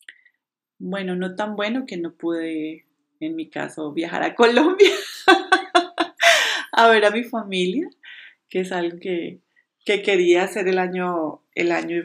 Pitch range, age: 170-220 Hz, 30-49